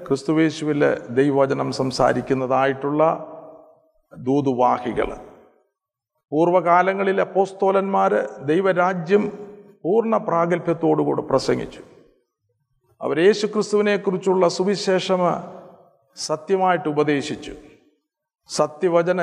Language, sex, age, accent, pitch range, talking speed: Malayalam, male, 50-69, native, 150-190 Hz, 50 wpm